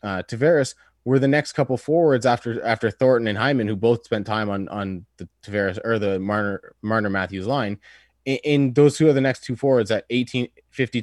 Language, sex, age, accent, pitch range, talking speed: English, male, 20-39, American, 105-135 Hz, 195 wpm